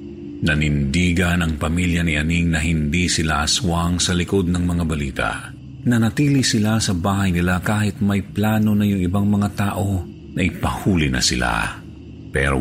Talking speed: 150 wpm